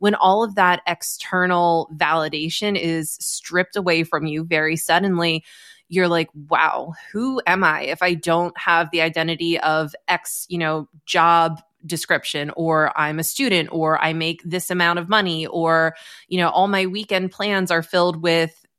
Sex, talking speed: female, 165 wpm